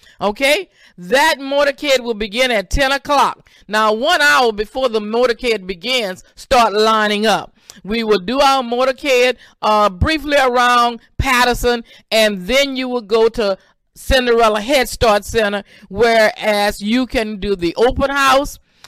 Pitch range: 215-280 Hz